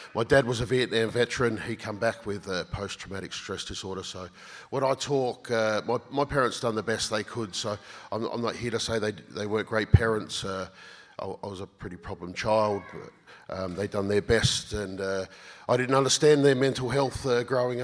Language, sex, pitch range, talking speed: English, male, 100-120 Hz, 215 wpm